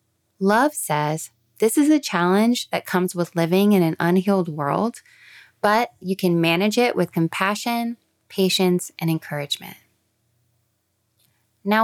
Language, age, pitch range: English, 20-39, 160-215 Hz